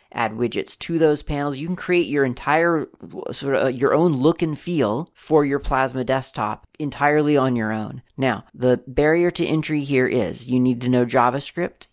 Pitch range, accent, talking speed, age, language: 115-145 Hz, American, 185 wpm, 40-59, English